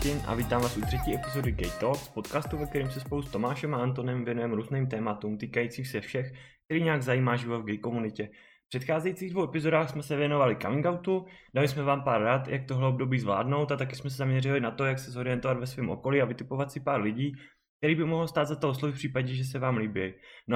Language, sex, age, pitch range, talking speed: Czech, male, 20-39, 125-155 Hz, 235 wpm